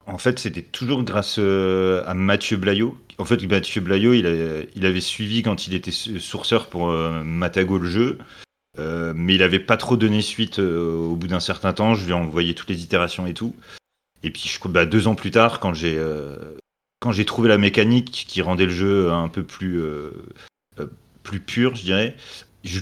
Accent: French